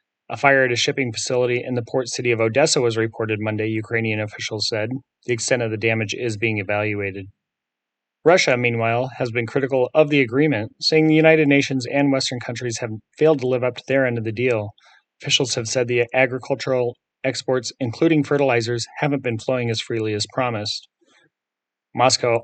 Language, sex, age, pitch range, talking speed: English, male, 30-49, 110-130 Hz, 180 wpm